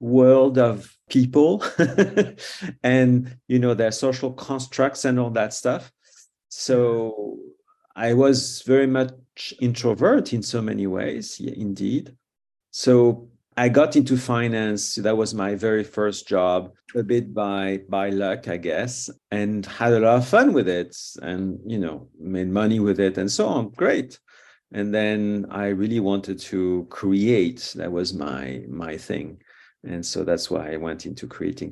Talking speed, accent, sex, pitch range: 155 wpm, French, male, 95-125 Hz